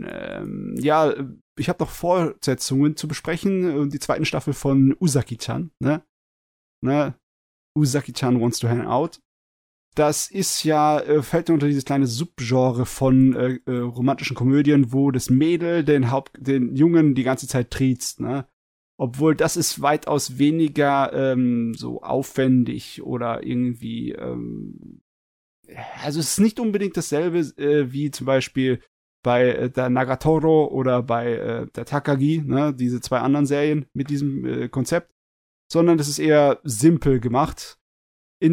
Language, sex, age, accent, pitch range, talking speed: German, male, 30-49, German, 125-150 Hz, 130 wpm